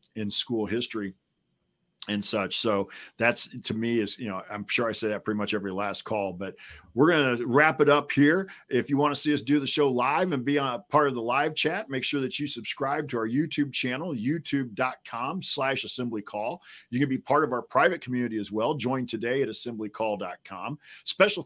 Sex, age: male, 40-59